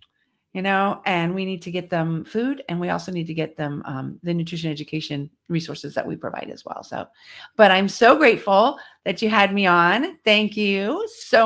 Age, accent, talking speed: 40-59, American, 205 wpm